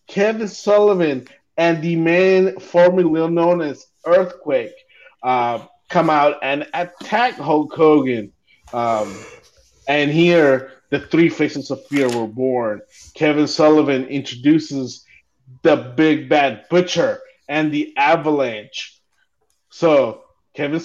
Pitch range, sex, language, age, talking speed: 135-165 Hz, male, English, 30-49, 110 wpm